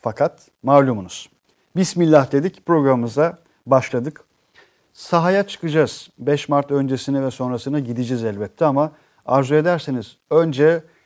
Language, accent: Turkish, native